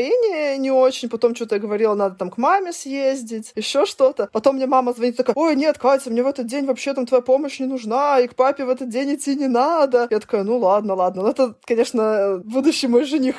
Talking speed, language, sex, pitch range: 235 wpm, Russian, female, 215-280 Hz